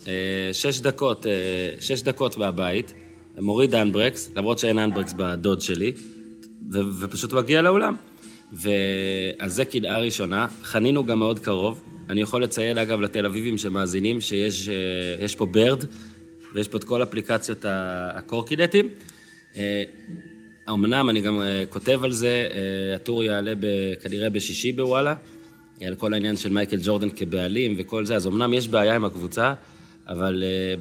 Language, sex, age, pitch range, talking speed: Hebrew, male, 30-49, 100-120 Hz, 130 wpm